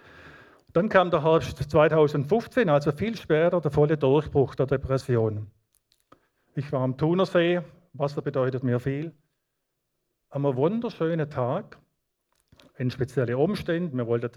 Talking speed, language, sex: 120 wpm, German, male